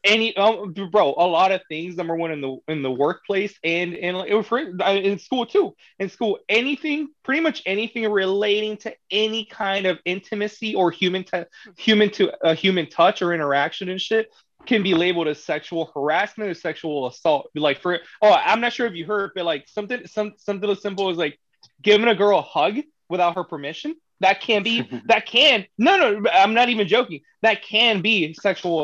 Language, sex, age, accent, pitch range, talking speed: English, male, 20-39, American, 150-210 Hz, 200 wpm